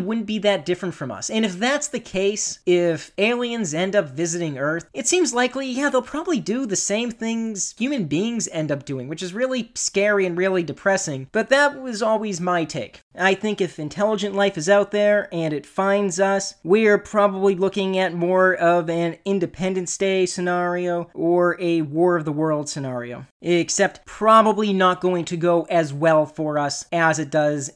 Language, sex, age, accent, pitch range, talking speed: English, male, 30-49, American, 165-195 Hz, 190 wpm